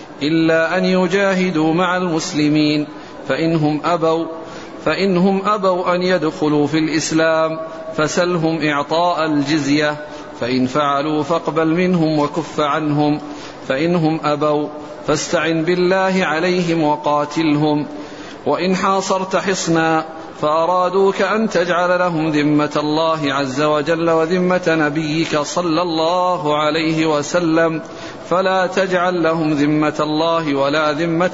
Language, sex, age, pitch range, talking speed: Arabic, male, 50-69, 150-175 Hz, 100 wpm